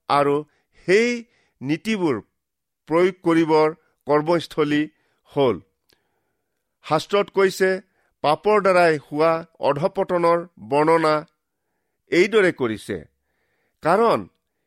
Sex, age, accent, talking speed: male, 50-69, Indian, 75 wpm